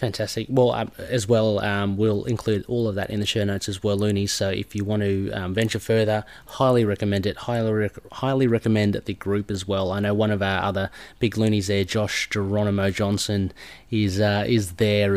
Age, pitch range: 30-49, 100-115 Hz